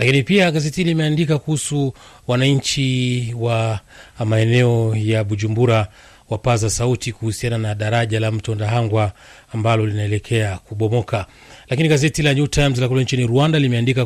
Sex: male